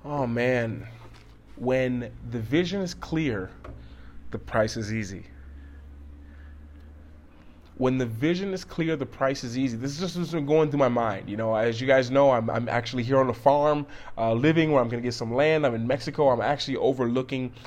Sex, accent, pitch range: male, American, 115-150 Hz